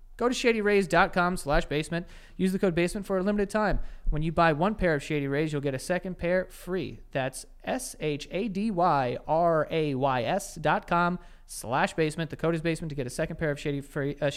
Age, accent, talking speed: 30-49, American, 190 wpm